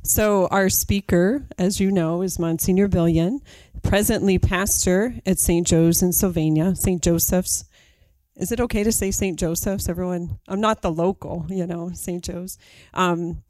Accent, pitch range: American, 175-200 Hz